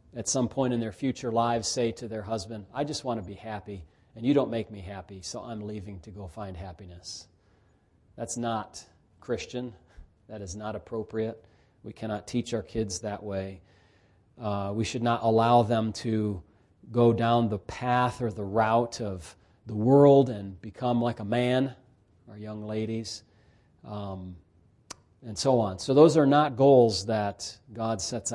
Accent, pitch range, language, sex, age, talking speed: American, 105-125 Hz, English, male, 40-59, 170 wpm